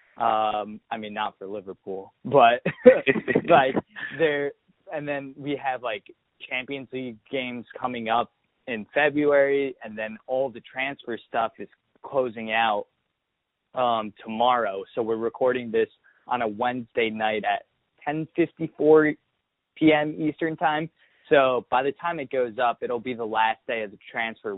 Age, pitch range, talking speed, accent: 20-39, 115-145 Hz, 145 wpm, American